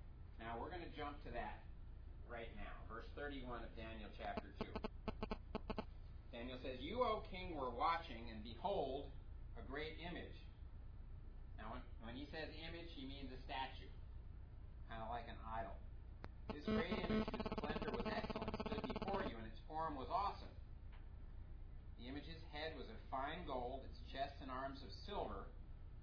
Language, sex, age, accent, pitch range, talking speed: English, male, 40-59, American, 85-125 Hz, 160 wpm